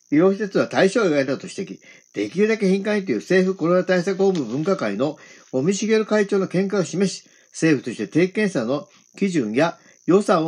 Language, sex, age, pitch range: Japanese, male, 50-69, 165-210 Hz